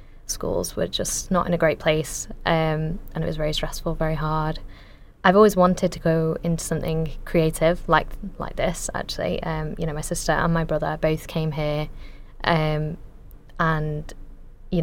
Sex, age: female, 20-39